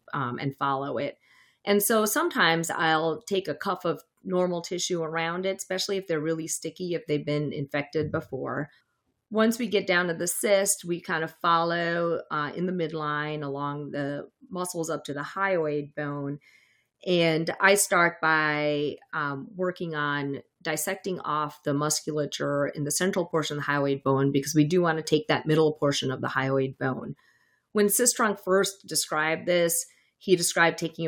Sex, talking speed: female, 170 wpm